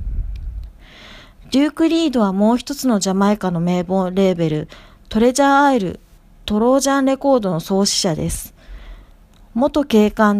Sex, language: female, Japanese